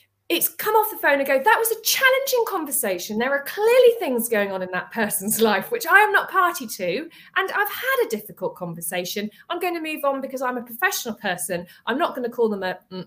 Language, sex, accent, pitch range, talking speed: English, female, British, 205-330 Hz, 240 wpm